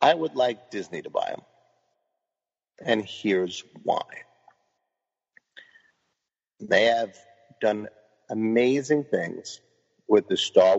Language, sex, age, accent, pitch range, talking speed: English, male, 50-69, American, 105-165 Hz, 100 wpm